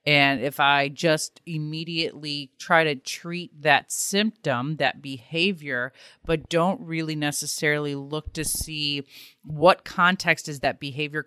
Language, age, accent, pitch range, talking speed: English, 30-49, American, 140-165 Hz, 130 wpm